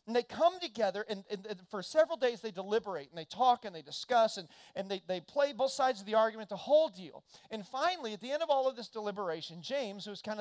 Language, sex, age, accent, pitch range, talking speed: English, male, 40-59, American, 200-280 Hz, 255 wpm